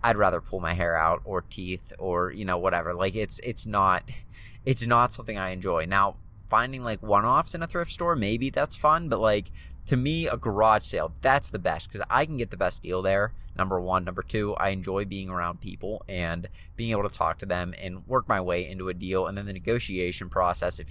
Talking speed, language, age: 225 wpm, English, 20-39